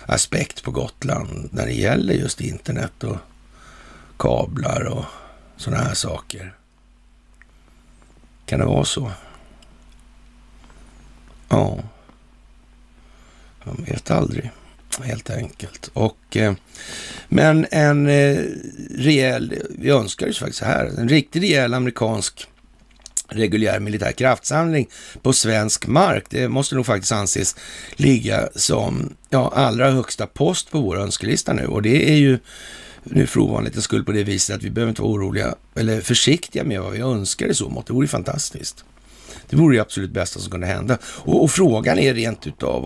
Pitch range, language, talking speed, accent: 100-130 Hz, Swedish, 145 wpm, native